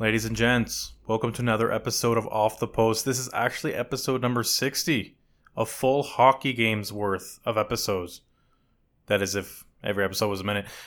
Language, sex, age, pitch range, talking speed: English, male, 20-39, 100-120 Hz, 175 wpm